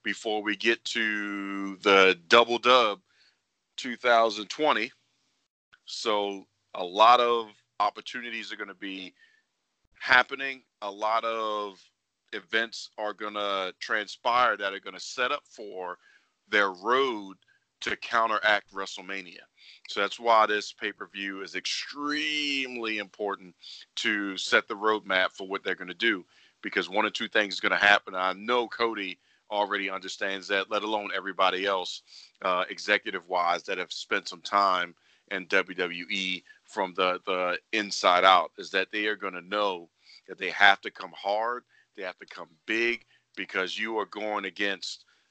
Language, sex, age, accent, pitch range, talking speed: English, male, 40-59, American, 95-115 Hz, 145 wpm